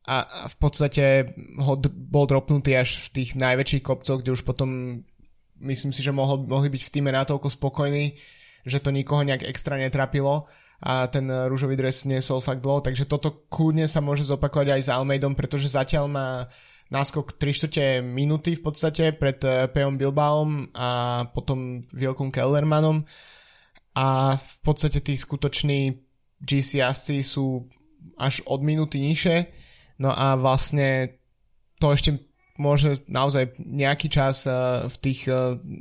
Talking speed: 145 wpm